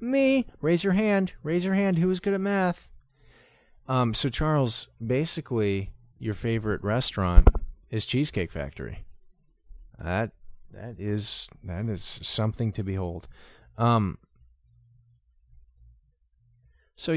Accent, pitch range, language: American, 80-120 Hz, English